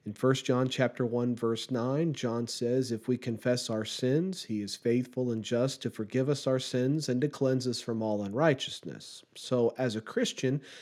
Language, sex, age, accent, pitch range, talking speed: English, male, 40-59, American, 115-150 Hz, 195 wpm